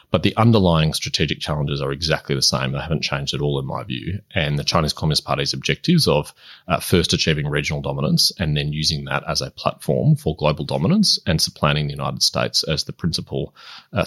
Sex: male